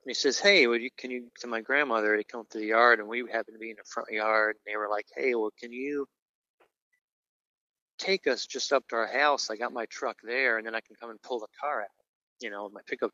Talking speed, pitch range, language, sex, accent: 275 wpm, 110-145 Hz, English, male, American